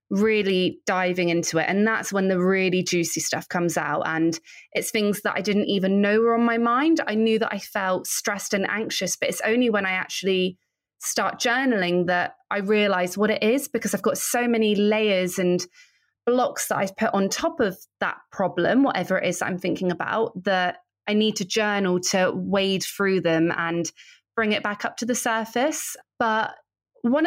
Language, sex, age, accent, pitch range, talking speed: English, female, 20-39, British, 180-225 Hz, 195 wpm